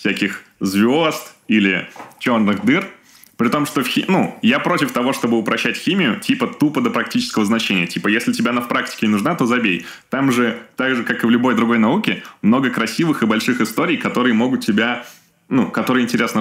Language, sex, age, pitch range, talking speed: Russian, male, 20-39, 110-160 Hz, 195 wpm